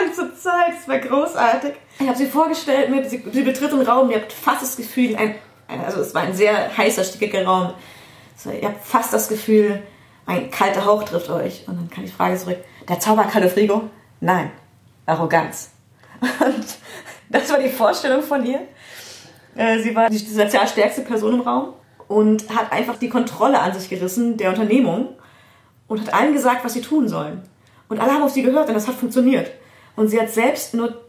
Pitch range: 200-255 Hz